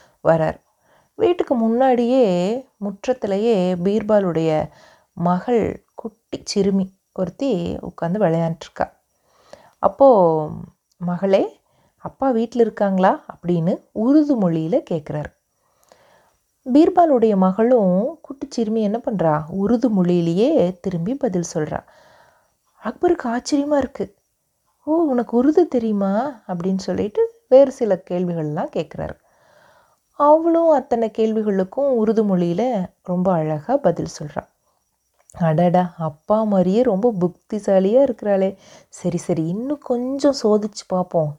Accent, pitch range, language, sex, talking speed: native, 180-260 Hz, Tamil, female, 95 wpm